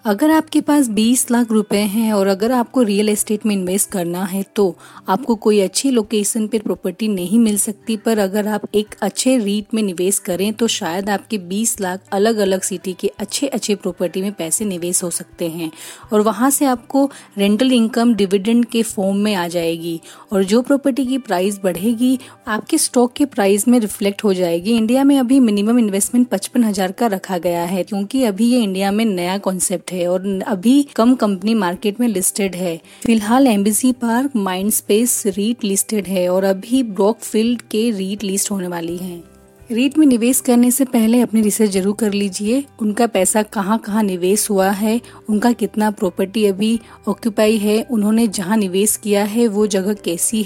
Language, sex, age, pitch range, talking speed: Hindi, female, 30-49, 195-235 Hz, 180 wpm